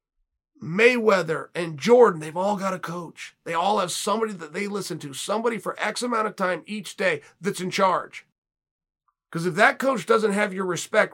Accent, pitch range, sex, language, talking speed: American, 180-225 Hz, male, English, 190 wpm